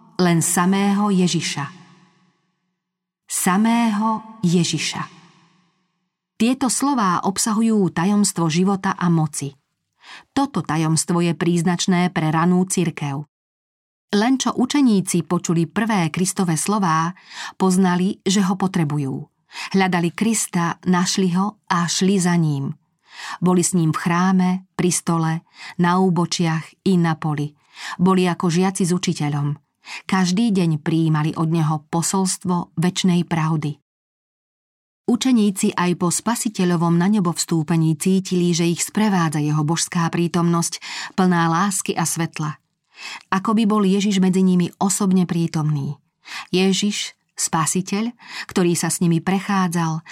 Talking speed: 115 wpm